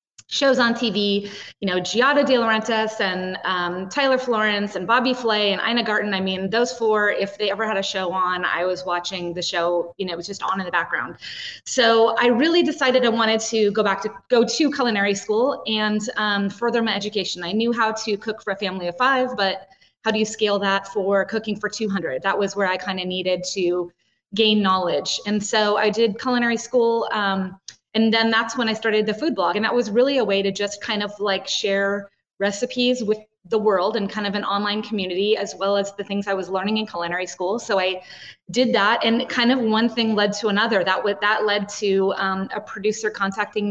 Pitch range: 195-225 Hz